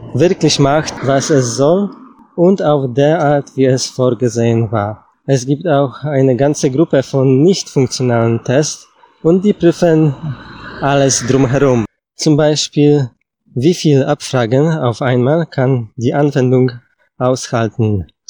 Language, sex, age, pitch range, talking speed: Polish, male, 20-39, 120-145 Hz, 130 wpm